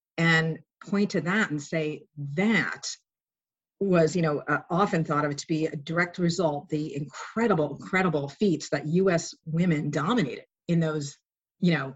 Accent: American